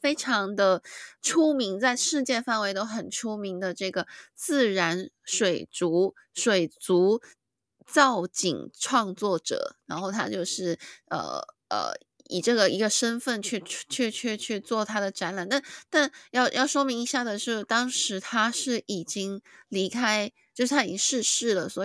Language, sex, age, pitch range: Chinese, female, 20-39, 195-265 Hz